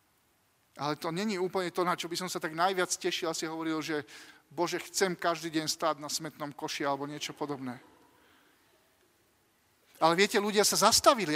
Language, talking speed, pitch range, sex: Slovak, 175 wpm, 165-220 Hz, male